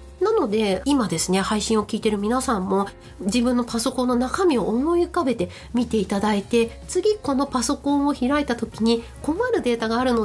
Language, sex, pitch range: Japanese, female, 220-315 Hz